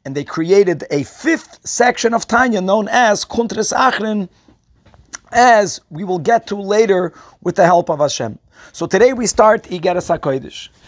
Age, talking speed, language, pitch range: 40-59, 160 wpm, English, 160-210 Hz